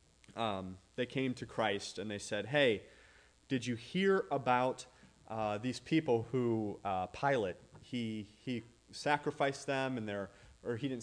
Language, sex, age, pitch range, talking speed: English, male, 30-49, 115-140 Hz, 150 wpm